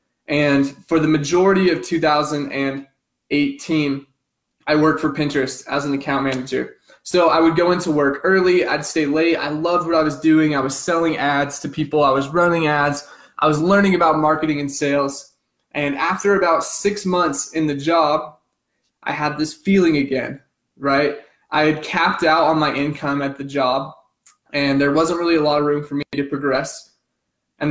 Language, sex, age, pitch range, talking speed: English, male, 20-39, 140-165 Hz, 180 wpm